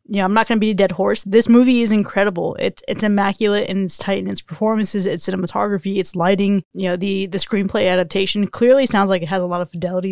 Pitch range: 190-230 Hz